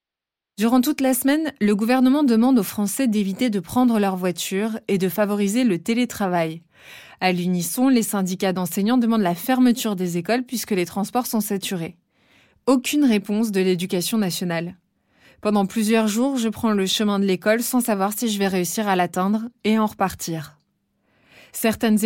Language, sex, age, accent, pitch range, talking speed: French, female, 20-39, French, 195-245 Hz, 165 wpm